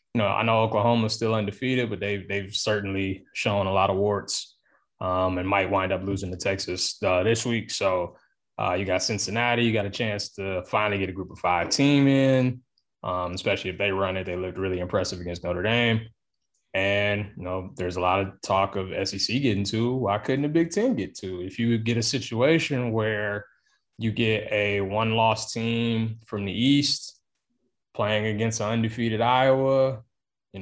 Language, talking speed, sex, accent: English, 190 wpm, male, American